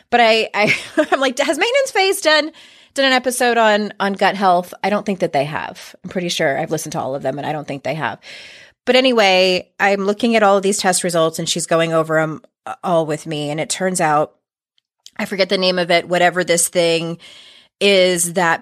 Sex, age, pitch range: female, 30-49, 170-225 Hz